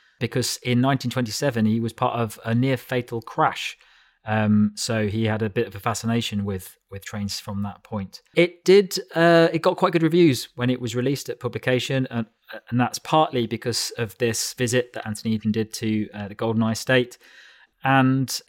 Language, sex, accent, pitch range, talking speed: English, male, British, 110-130 Hz, 190 wpm